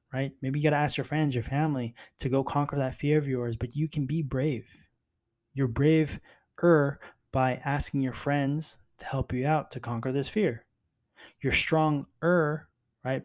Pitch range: 120-150 Hz